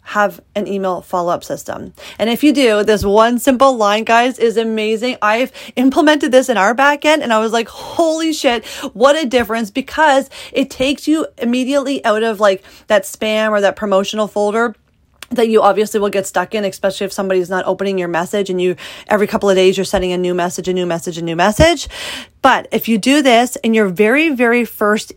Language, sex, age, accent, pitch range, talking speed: English, female, 30-49, American, 185-235 Hz, 205 wpm